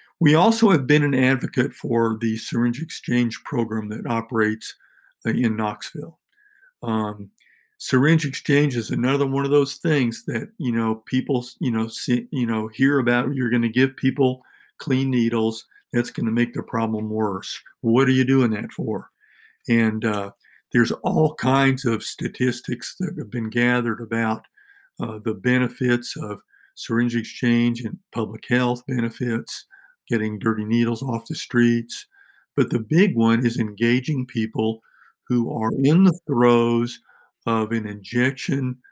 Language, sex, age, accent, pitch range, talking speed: English, male, 50-69, American, 110-130 Hz, 150 wpm